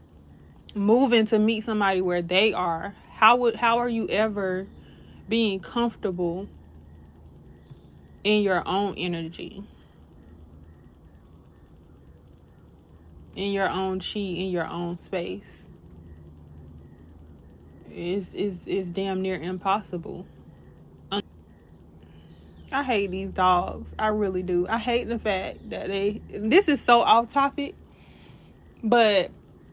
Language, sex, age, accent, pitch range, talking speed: English, female, 20-39, American, 160-225 Hz, 105 wpm